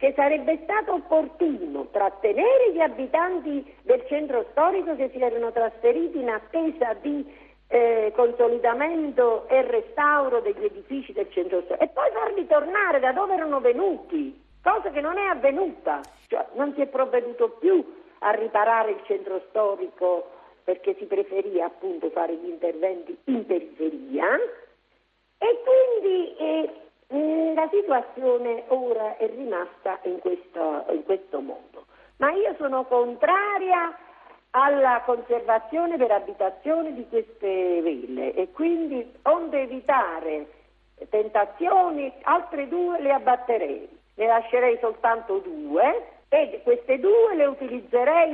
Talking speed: 125 wpm